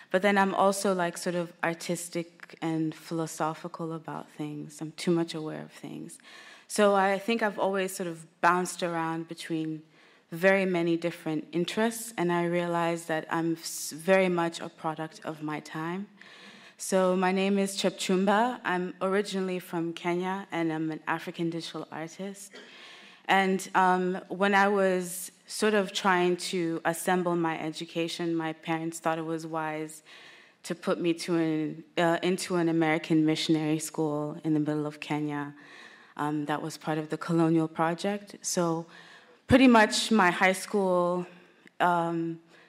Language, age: English, 20-39